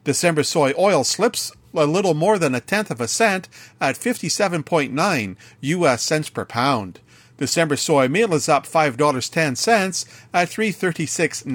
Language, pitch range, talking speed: English, 130-170 Hz, 145 wpm